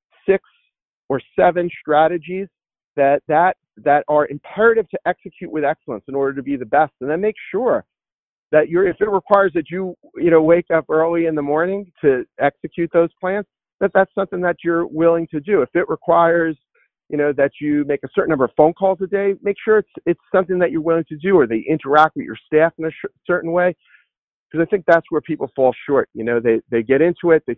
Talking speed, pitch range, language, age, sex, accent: 225 wpm, 140-175 Hz, English, 40-59, male, American